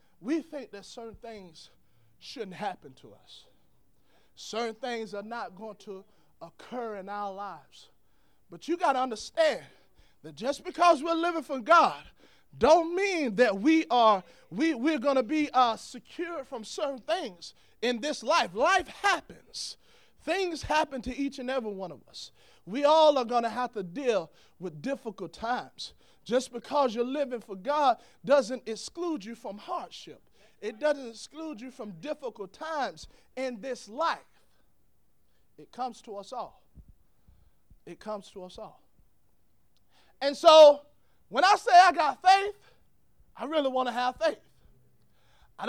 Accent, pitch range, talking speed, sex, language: American, 225-305 Hz, 150 wpm, male, English